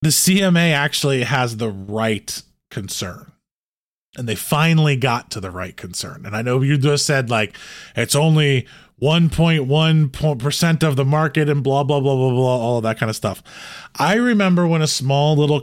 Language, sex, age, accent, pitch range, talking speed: English, male, 20-39, American, 125-170 Hz, 175 wpm